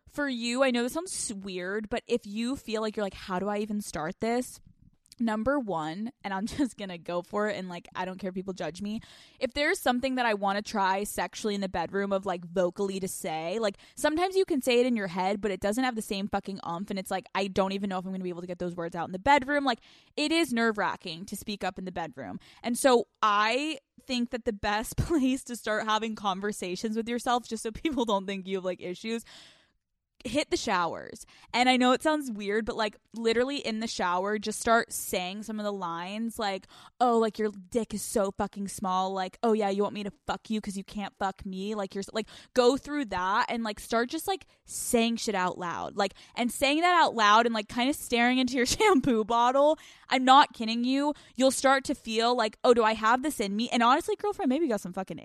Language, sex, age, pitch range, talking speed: English, female, 20-39, 195-245 Hz, 245 wpm